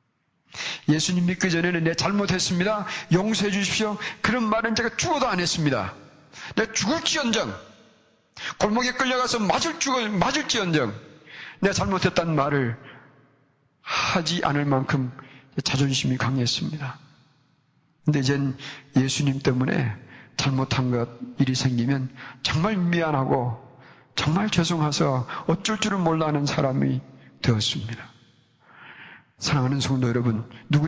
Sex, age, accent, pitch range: male, 40-59, native, 130-165 Hz